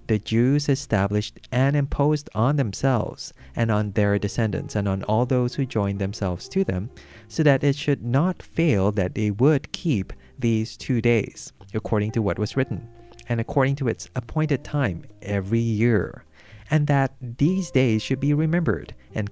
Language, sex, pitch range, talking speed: English, male, 100-130 Hz, 170 wpm